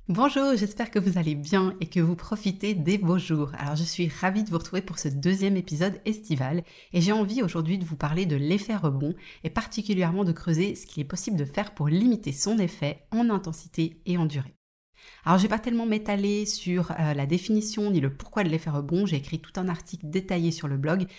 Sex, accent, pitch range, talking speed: female, French, 155-195 Hz, 225 wpm